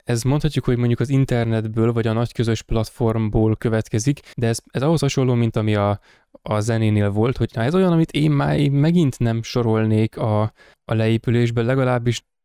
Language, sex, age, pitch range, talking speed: Hungarian, male, 20-39, 110-125 Hz, 180 wpm